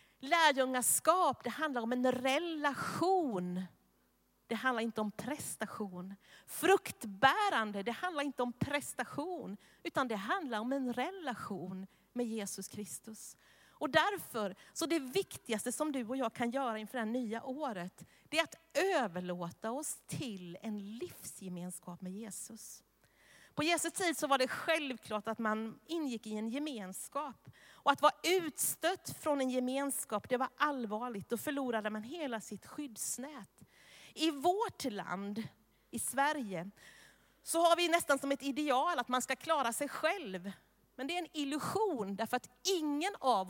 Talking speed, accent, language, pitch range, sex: 145 wpm, native, Swedish, 215-300 Hz, female